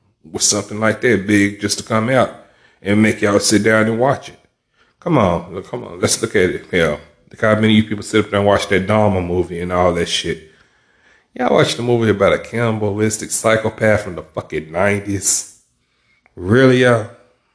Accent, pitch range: American, 90-110 Hz